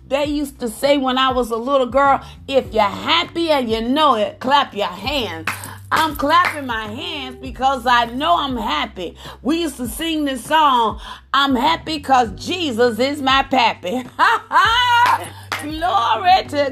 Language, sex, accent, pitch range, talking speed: English, female, American, 255-330 Hz, 160 wpm